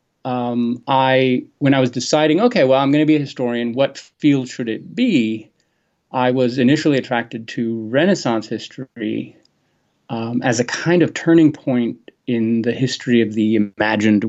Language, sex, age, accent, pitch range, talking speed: English, male, 30-49, American, 115-150 Hz, 165 wpm